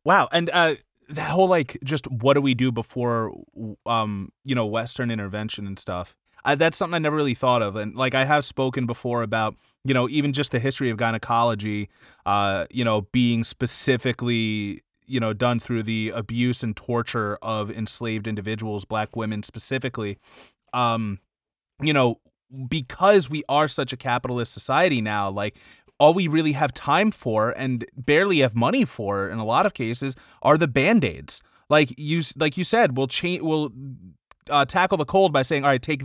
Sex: male